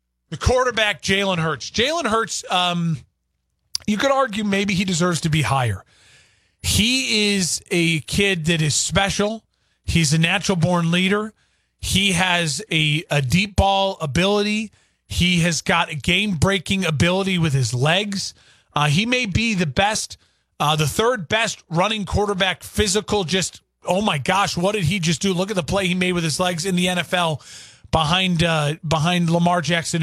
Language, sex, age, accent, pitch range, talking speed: English, male, 30-49, American, 160-205 Hz, 165 wpm